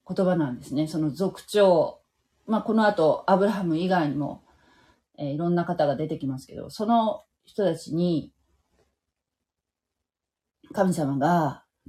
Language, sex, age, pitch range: Japanese, female, 30-49, 150-215 Hz